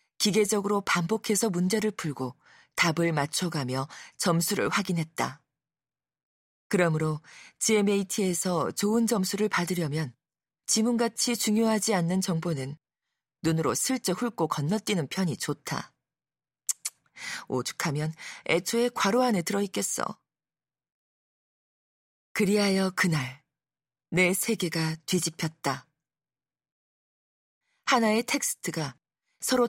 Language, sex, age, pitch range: Korean, female, 40-59, 155-215 Hz